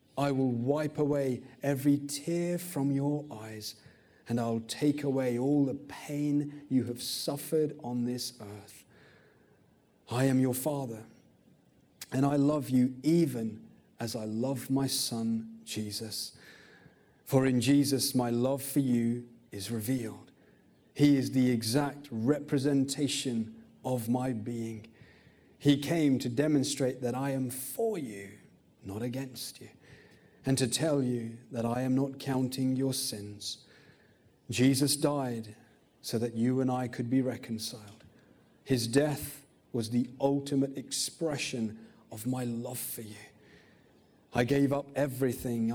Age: 30-49